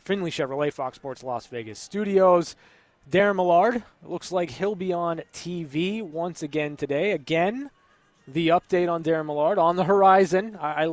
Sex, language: male, English